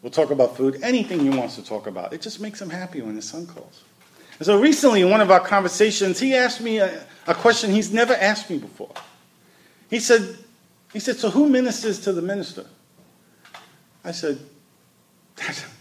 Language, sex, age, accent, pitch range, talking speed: English, male, 40-59, American, 140-200 Hz, 195 wpm